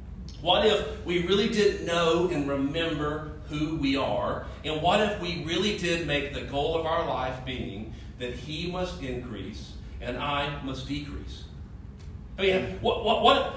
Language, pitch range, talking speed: English, 125-205 Hz, 165 wpm